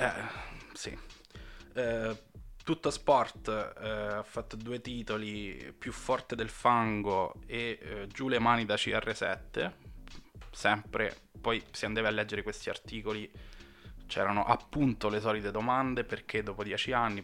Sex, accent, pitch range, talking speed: male, native, 105-120 Hz, 135 wpm